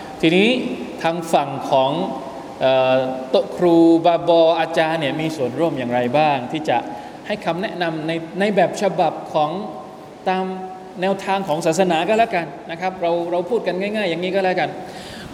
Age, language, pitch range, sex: 20-39, Thai, 150-195 Hz, male